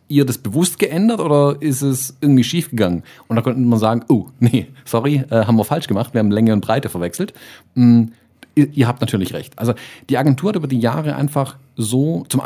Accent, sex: German, male